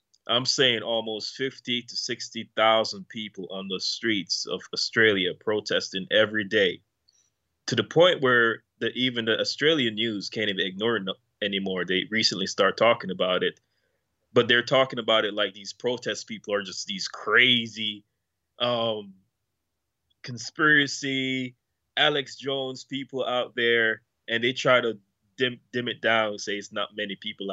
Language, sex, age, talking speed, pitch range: English, male, 20-39, 150 wpm, 100-125 Hz